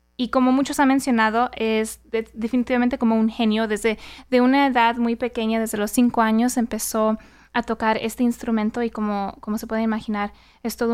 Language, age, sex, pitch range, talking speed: English, 20-39, female, 225-255 Hz, 185 wpm